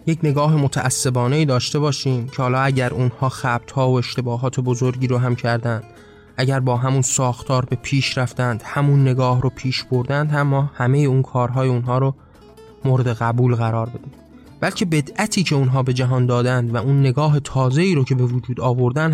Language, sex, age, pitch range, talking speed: Persian, male, 20-39, 120-140 Hz, 180 wpm